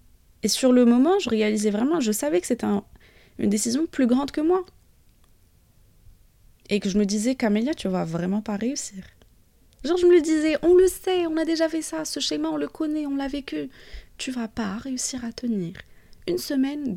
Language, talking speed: French, 210 wpm